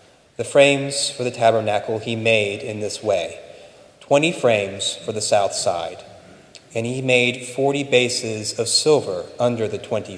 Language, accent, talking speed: English, American, 155 wpm